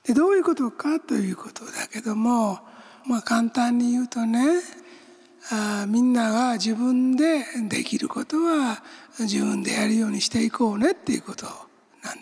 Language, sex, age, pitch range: Japanese, male, 60-79, 220-285 Hz